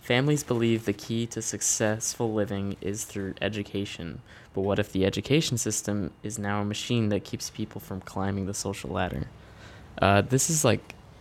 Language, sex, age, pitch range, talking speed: English, male, 20-39, 95-115 Hz, 170 wpm